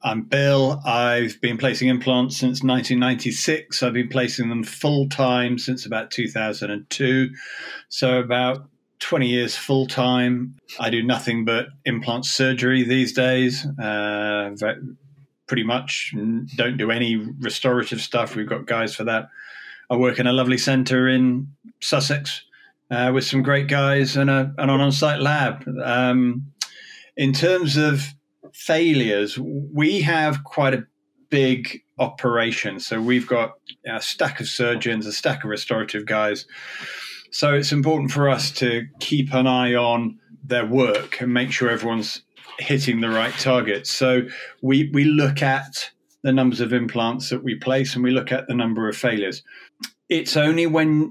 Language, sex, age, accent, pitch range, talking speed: English, male, 40-59, British, 120-140 Hz, 150 wpm